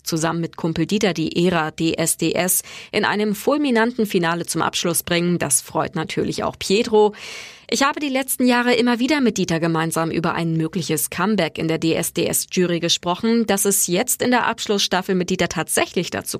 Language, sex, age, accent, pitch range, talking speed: German, female, 20-39, German, 165-215 Hz, 170 wpm